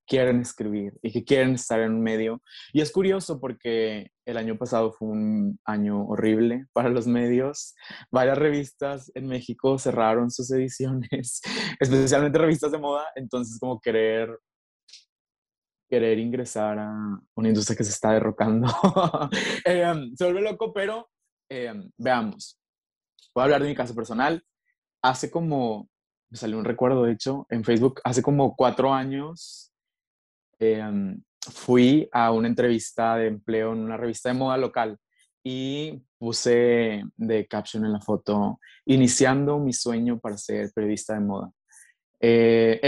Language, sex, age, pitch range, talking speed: Spanish, male, 20-39, 115-145 Hz, 145 wpm